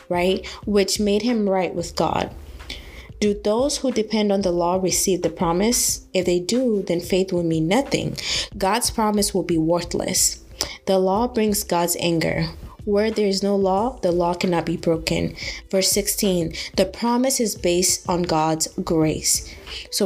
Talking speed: 165 wpm